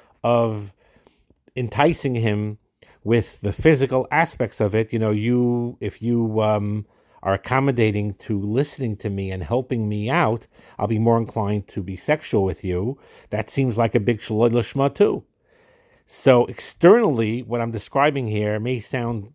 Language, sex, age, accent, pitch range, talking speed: English, male, 50-69, American, 105-135 Hz, 155 wpm